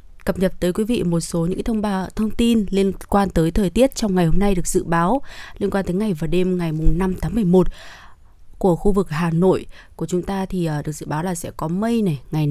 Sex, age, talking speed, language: female, 20-39, 265 wpm, Vietnamese